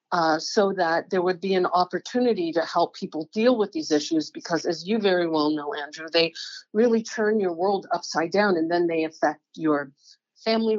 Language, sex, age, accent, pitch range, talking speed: English, female, 50-69, American, 165-210 Hz, 195 wpm